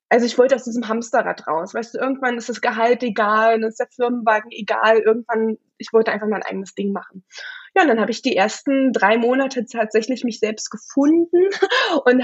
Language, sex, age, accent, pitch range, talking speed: German, female, 20-39, German, 215-250 Hz, 200 wpm